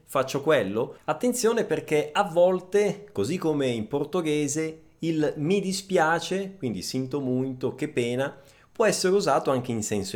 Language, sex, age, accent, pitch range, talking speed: Italian, male, 30-49, native, 130-205 Hz, 140 wpm